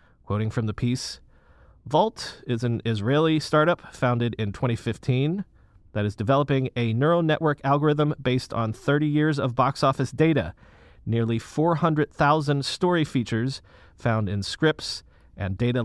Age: 30-49